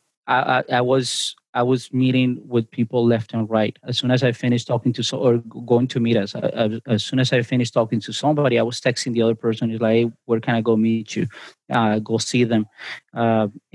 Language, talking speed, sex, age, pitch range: English, 230 wpm, male, 30-49, 115-125 Hz